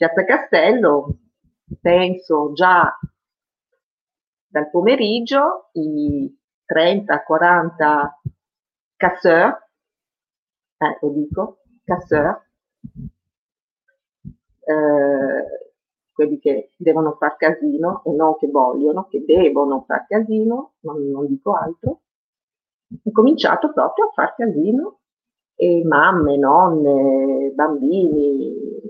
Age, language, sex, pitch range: 40-59, Italian, female, 155-225 Hz